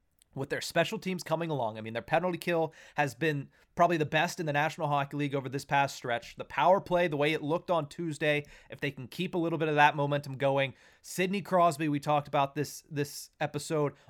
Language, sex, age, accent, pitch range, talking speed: English, male, 30-49, American, 140-165 Hz, 225 wpm